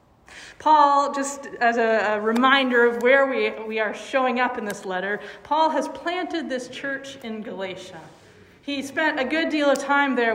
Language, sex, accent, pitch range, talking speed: English, female, American, 220-300 Hz, 170 wpm